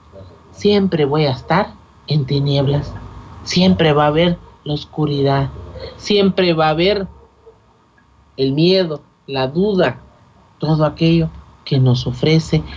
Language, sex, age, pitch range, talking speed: Spanish, male, 50-69, 135-175 Hz, 115 wpm